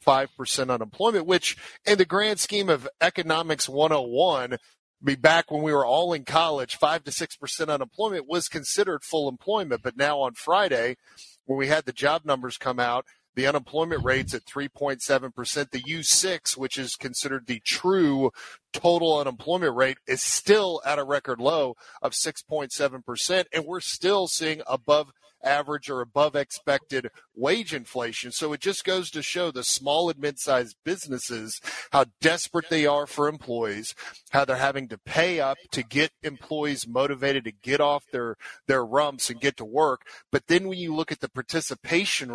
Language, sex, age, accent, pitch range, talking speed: English, male, 40-59, American, 130-165 Hz, 160 wpm